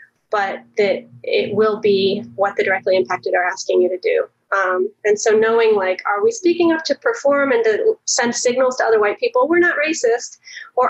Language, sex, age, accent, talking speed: English, female, 30-49, American, 205 wpm